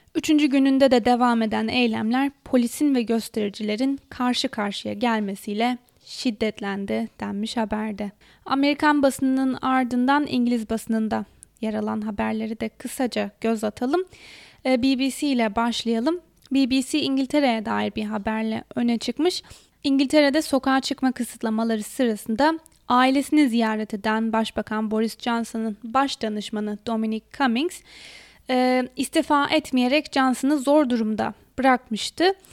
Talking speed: 105 wpm